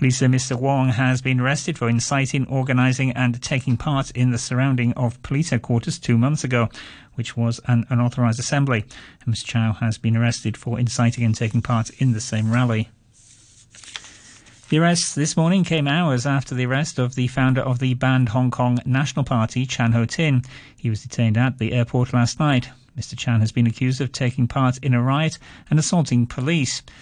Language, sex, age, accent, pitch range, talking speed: English, male, 40-59, British, 115-135 Hz, 190 wpm